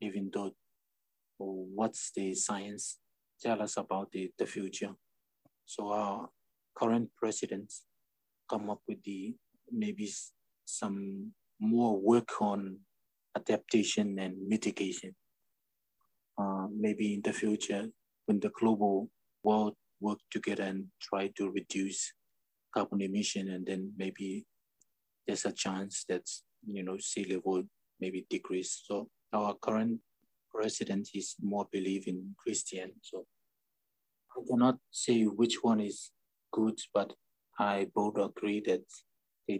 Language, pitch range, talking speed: English, 95-115 Hz, 115 wpm